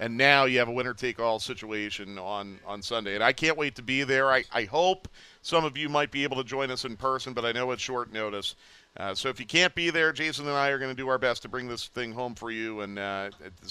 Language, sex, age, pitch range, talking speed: English, male, 40-59, 110-140 Hz, 270 wpm